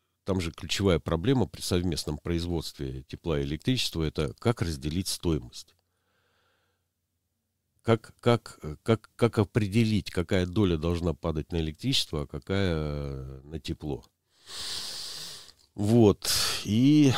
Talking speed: 100 wpm